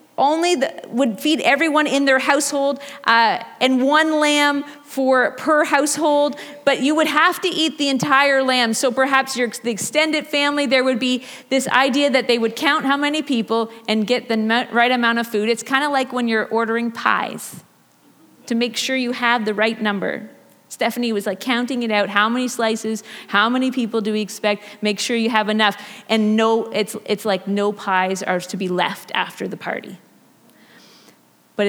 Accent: American